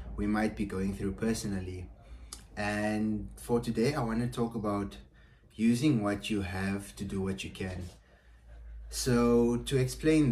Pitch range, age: 90-105 Hz, 20-39